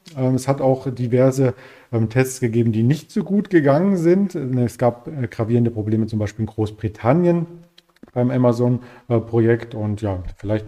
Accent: German